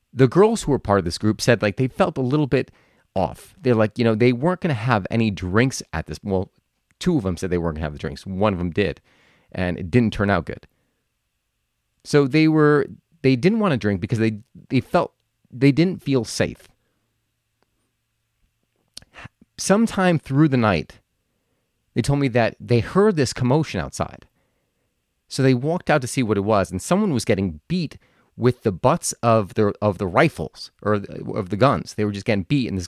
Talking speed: 205 wpm